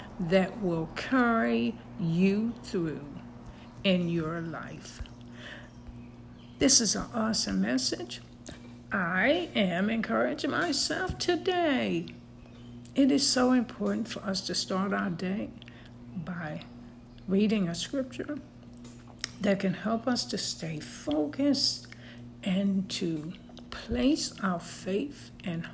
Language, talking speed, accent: English, 105 wpm, American